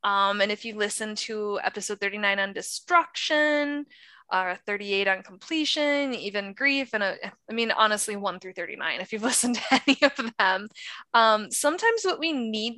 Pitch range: 200-255 Hz